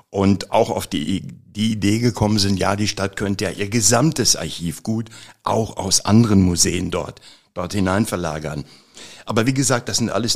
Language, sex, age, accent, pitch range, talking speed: German, male, 60-79, German, 95-125 Hz, 180 wpm